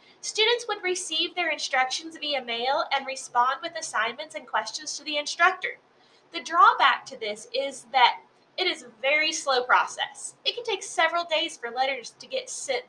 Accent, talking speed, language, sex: American, 175 wpm, English, female